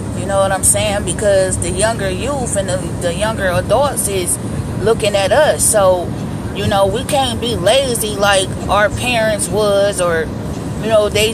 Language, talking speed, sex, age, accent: English, 175 wpm, female, 20-39, American